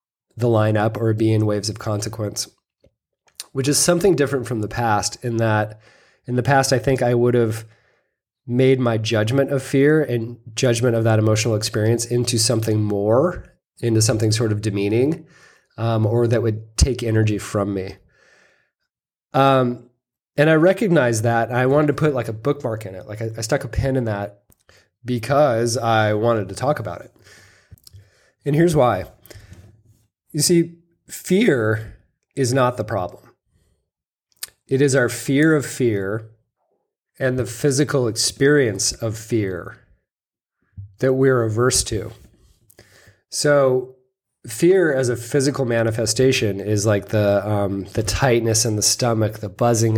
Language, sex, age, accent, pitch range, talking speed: English, male, 20-39, American, 105-130 Hz, 150 wpm